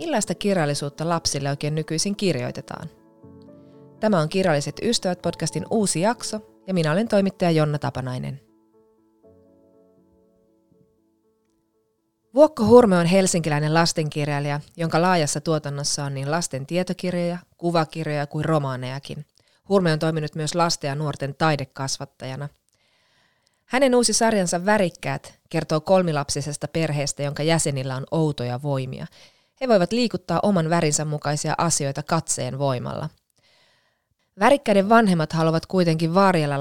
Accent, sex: native, female